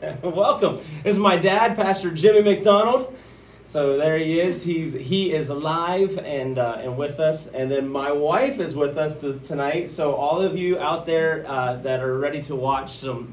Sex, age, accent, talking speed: male, 30-49, American, 190 wpm